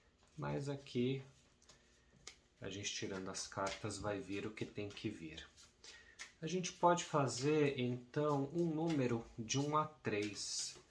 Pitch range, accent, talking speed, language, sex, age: 110-145 Hz, Brazilian, 145 wpm, Portuguese, male, 30-49